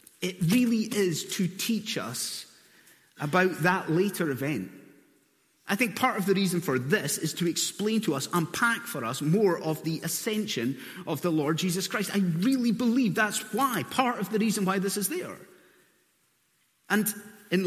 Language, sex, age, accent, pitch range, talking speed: English, male, 30-49, British, 170-230 Hz, 170 wpm